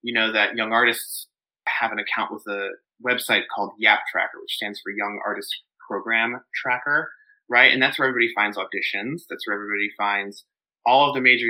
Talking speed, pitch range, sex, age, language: 190 wpm, 110-130 Hz, male, 20-39, English